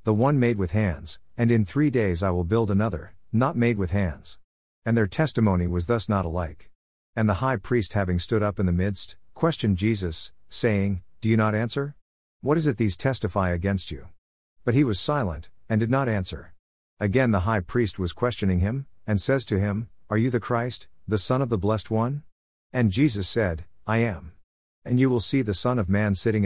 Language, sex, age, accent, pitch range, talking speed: English, male, 50-69, American, 90-120 Hz, 205 wpm